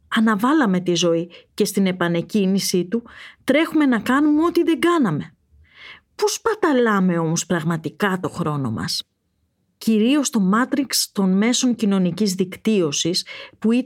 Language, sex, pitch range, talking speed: Greek, female, 180-255 Hz, 140 wpm